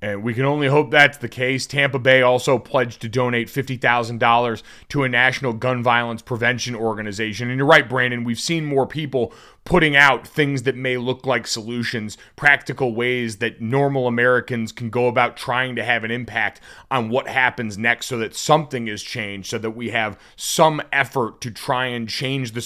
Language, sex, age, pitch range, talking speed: English, male, 30-49, 110-130 Hz, 190 wpm